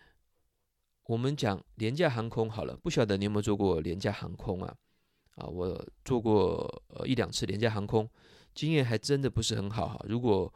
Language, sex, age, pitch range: Chinese, male, 20-39, 105-125 Hz